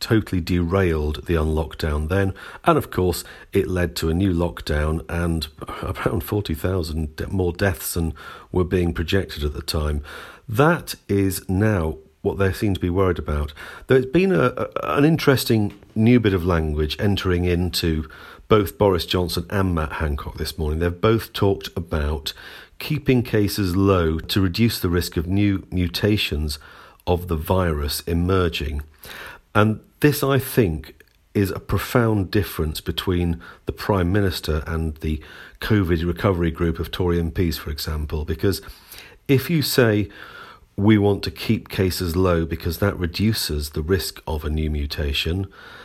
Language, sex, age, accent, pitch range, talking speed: English, male, 50-69, British, 80-100 Hz, 150 wpm